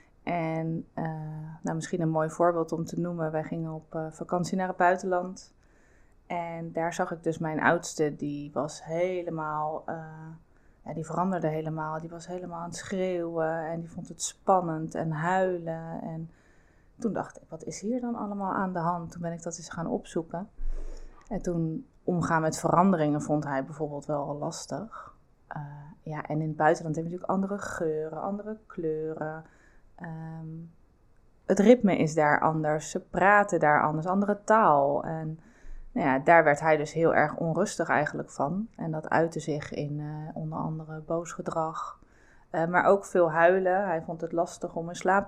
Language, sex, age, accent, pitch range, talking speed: Dutch, female, 20-39, Dutch, 155-180 Hz, 175 wpm